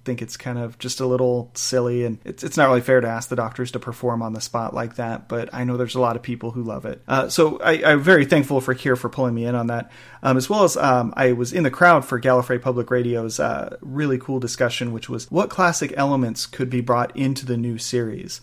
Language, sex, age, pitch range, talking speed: English, male, 40-59, 120-135 Hz, 260 wpm